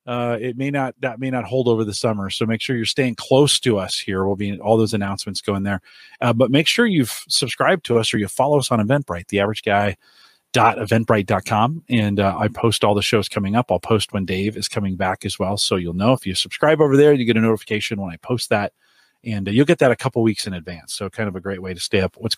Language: English